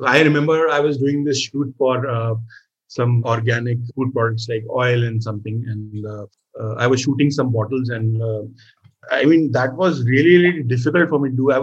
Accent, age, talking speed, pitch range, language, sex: Indian, 30-49, 200 wpm, 115-140 Hz, English, male